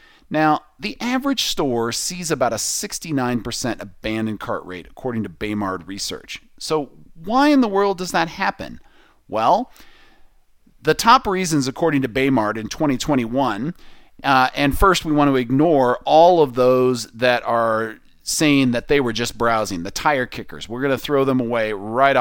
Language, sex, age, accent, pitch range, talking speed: English, male, 40-59, American, 125-170 Hz, 160 wpm